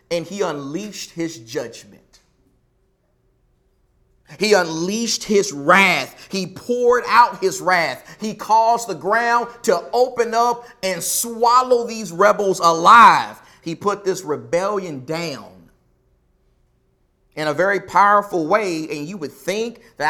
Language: English